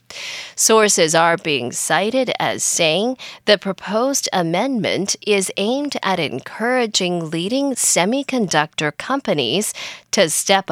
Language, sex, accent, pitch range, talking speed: English, female, American, 170-245 Hz, 100 wpm